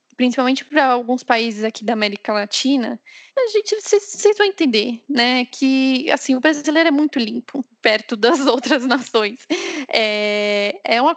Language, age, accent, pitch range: Portuguese, 10-29, Brazilian, 230-285 Hz